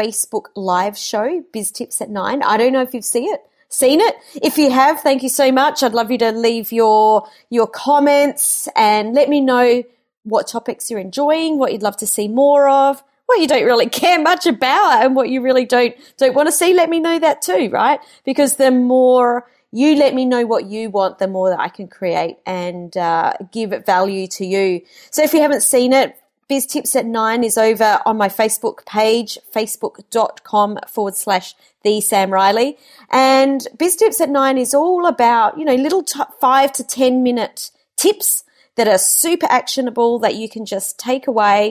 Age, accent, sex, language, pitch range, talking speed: 30-49, Australian, female, English, 215-280 Hz, 200 wpm